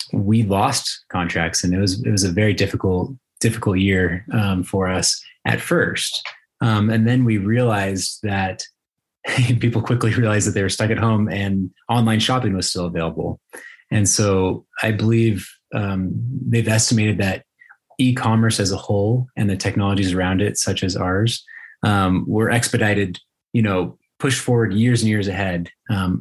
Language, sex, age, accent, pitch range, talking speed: English, male, 30-49, American, 95-115 Hz, 165 wpm